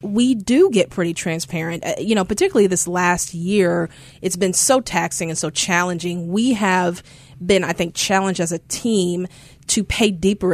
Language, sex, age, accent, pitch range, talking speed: English, female, 30-49, American, 170-205 Hz, 170 wpm